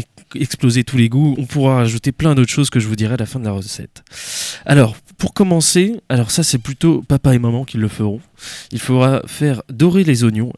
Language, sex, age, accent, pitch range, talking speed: French, male, 20-39, French, 110-140 Hz, 220 wpm